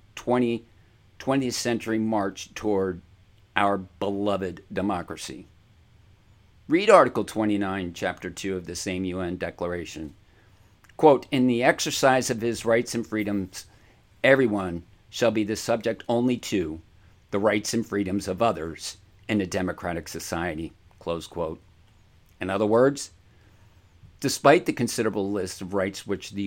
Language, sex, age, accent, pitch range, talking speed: English, male, 50-69, American, 95-115 Hz, 130 wpm